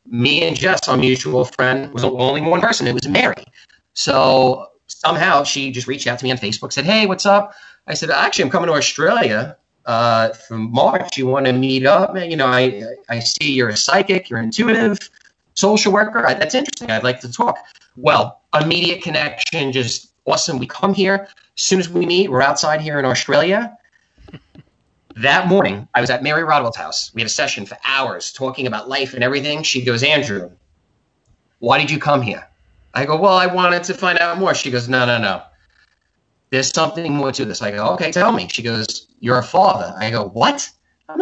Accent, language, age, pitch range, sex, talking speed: American, English, 30-49, 125-185 Hz, male, 205 wpm